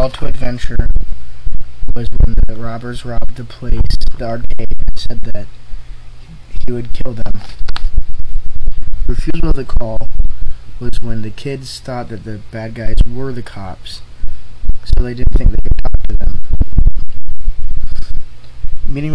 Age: 20-39